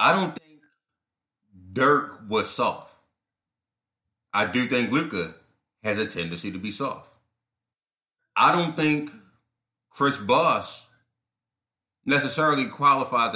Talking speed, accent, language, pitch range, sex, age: 105 wpm, American, English, 110-145 Hz, male, 30-49